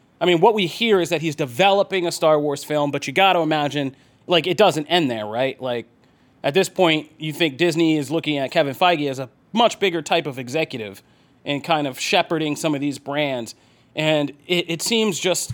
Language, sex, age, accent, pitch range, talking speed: English, male, 30-49, American, 145-180 Hz, 215 wpm